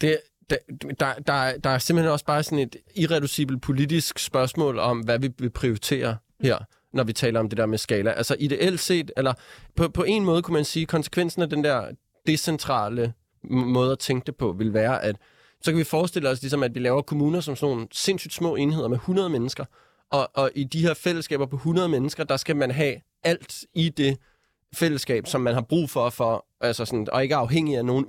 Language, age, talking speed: Danish, 20-39, 215 wpm